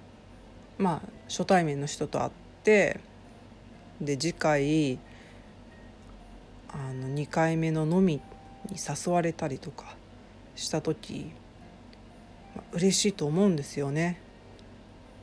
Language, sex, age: Japanese, female, 40-59